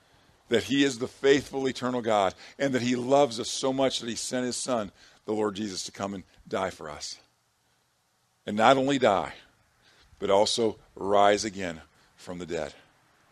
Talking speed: 175 wpm